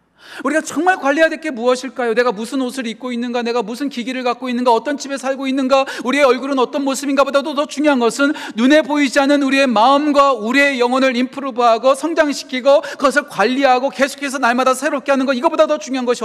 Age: 40-59